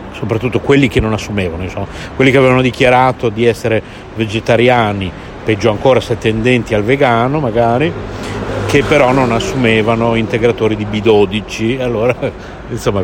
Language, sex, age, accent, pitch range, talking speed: Italian, male, 60-79, native, 95-115 Hz, 130 wpm